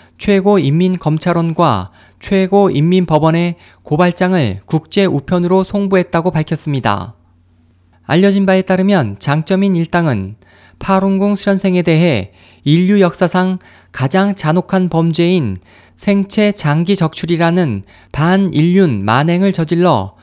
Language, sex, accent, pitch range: Korean, male, native, 115-185 Hz